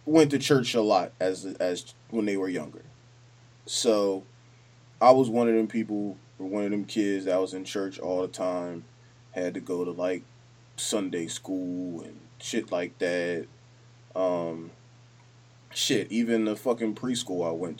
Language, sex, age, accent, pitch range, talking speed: English, male, 20-39, American, 95-120 Hz, 160 wpm